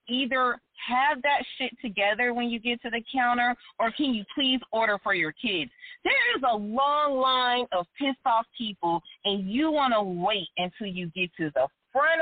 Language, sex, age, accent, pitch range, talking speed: English, female, 30-49, American, 200-300 Hz, 190 wpm